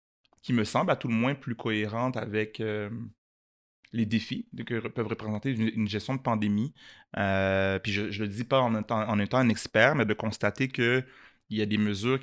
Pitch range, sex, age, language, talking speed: 110-130 Hz, male, 30-49, French, 210 wpm